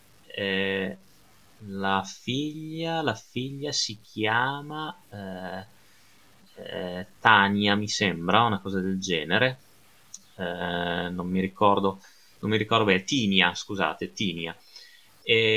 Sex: male